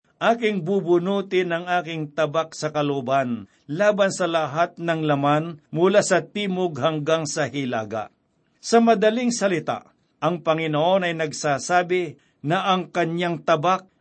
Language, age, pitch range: Filipino, 50-69, 150-180 Hz